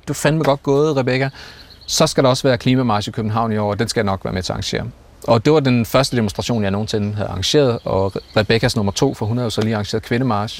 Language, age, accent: Danish, 30-49, native